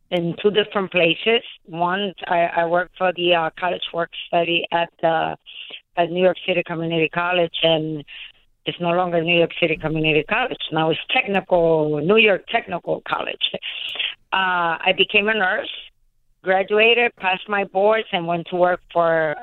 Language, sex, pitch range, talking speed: English, female, 160-190 Hz, 160 wpm